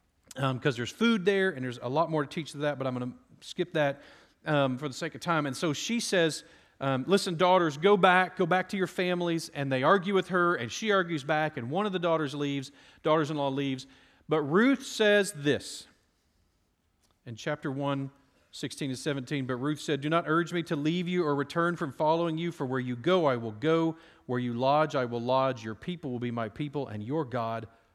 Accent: American